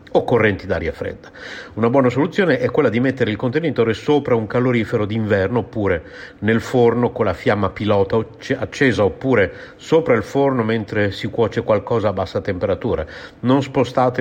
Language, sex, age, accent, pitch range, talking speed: Italian, male, 50-69, native, 95-130 Hz, 160 wpm